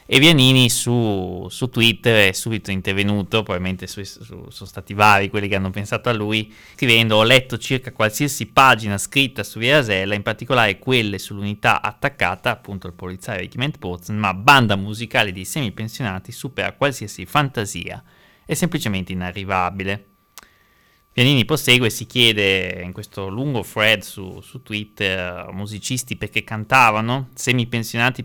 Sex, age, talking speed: male, 20-39, 145 wpm